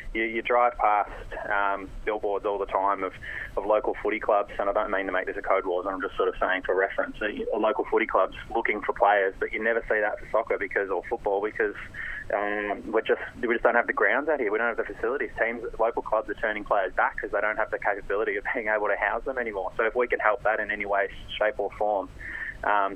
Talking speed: 260 wpm